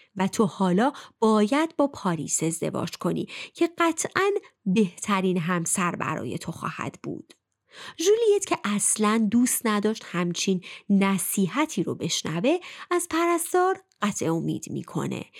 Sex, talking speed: female, 115 wpm